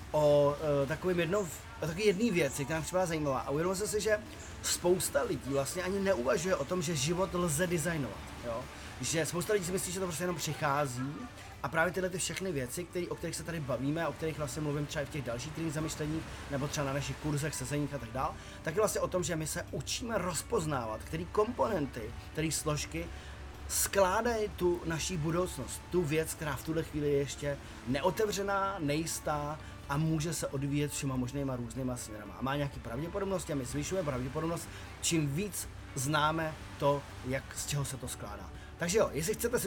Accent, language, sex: native, Czech, male